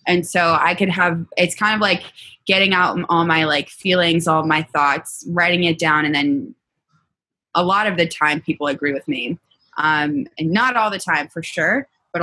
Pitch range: 155-185 Hz